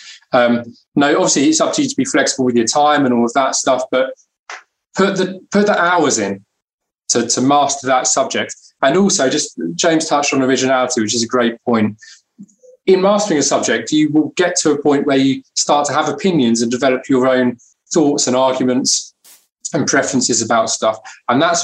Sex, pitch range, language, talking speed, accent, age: male, 115-150 Hz, English, 195 wpm, British, 20-39